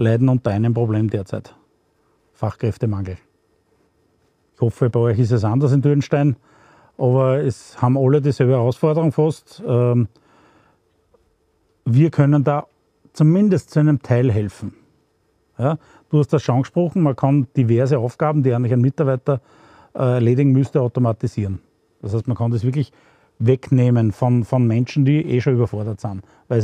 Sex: male